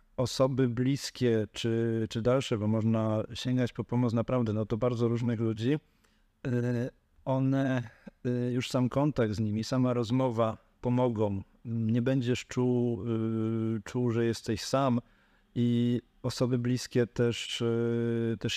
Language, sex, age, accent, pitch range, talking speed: Polish, male, 50-69, native, 110-125 Hz, 120 wpm